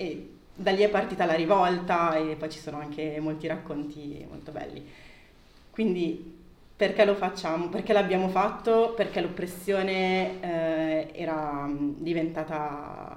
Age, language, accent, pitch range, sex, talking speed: 30-49, Italian, native, 155-180 Hz, female, 130 wpm